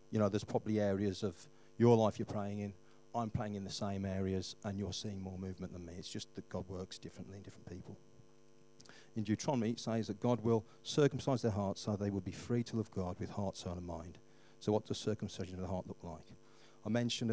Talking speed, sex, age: 230 wpm, male, 40-59